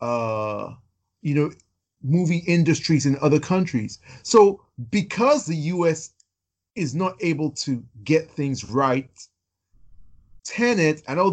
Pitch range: 120-160 Hz